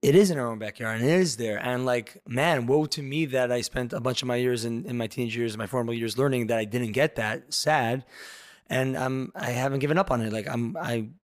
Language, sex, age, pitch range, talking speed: English, male, 20-39, 120-140 Hz, 270 wpm